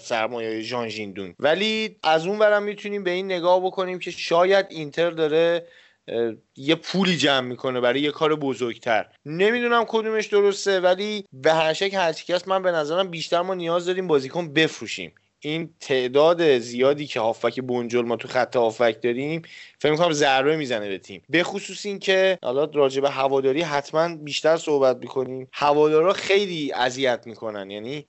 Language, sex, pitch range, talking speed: Persian, male, 130-180 Hz, 155 wpm